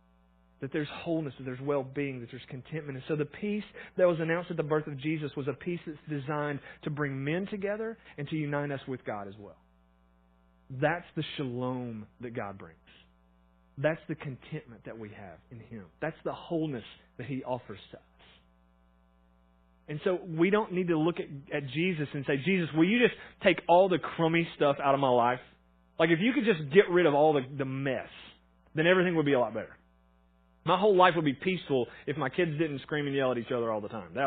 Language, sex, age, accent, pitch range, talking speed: English, male, 30-49, American, 110-160 Hz, 215 wpm